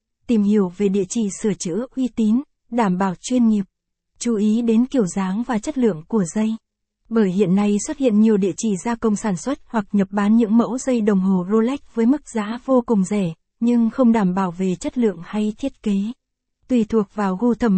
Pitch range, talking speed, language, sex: 200-235 Hz, 220 wpm, Vietnamese, female